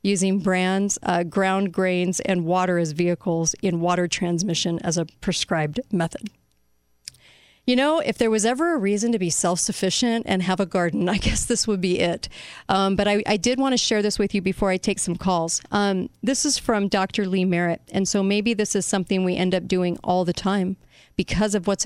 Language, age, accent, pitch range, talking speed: English, 40-59, American, 175-210 Hz, 210 wpm